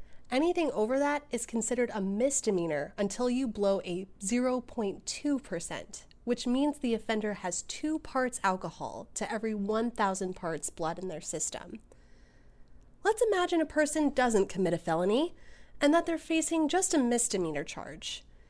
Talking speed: 145 wpm